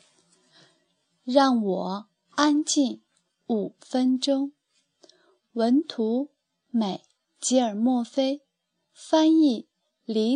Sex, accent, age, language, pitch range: female, native, 20-39, Chinese, 220-295 Hz